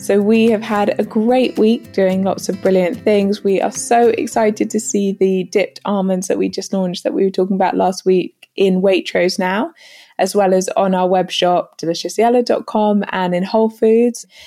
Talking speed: 190 wpm